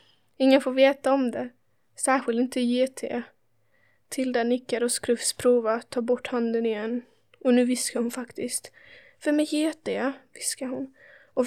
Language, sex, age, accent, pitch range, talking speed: Swedish, female, 20-39, native, 245-275 Hz, 150 wpm